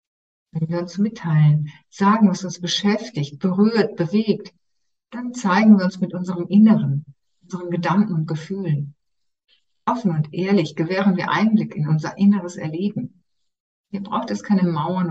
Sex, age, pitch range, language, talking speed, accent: female, 60-79, 155-200 Hz, German, 140 wpm, German